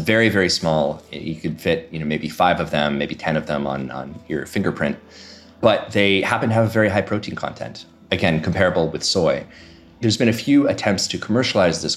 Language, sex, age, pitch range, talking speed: English, male, 30-49, 80-100 Hz, 210 wpm